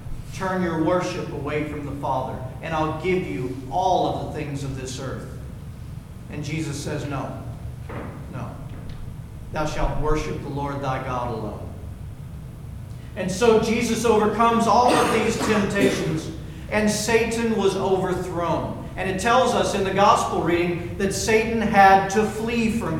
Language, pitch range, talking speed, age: English, 140-210 Hz, 150 wpm, 50-69